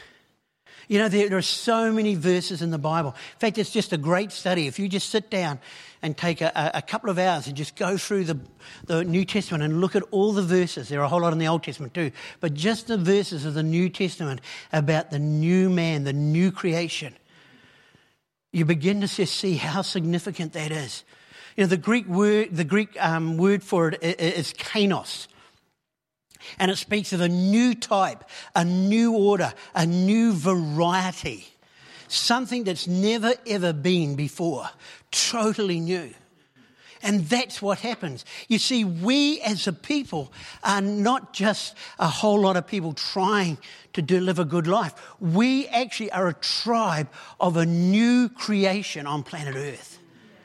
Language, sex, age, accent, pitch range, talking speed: English, male, 50-69, Australian, 165-205 Hz, 170 wpm